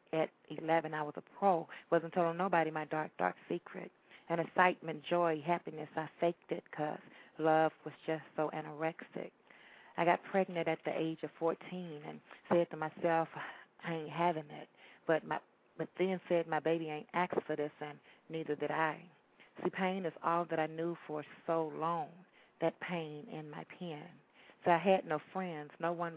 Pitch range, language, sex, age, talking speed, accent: 155-175 Hz, English, female, 40-59, 180 wpm, American